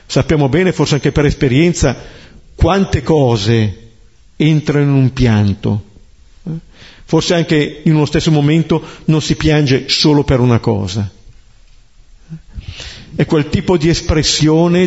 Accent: native